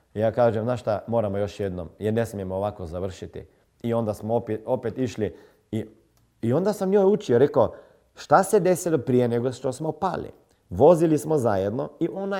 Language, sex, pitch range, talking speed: Croatian, male, 130-195 Hz, 180 wpm